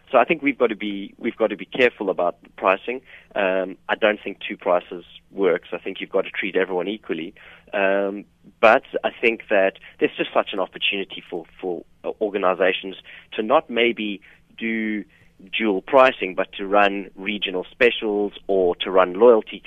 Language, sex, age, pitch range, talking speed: English, male, 30-49, 95-110 Hz, 175 wpm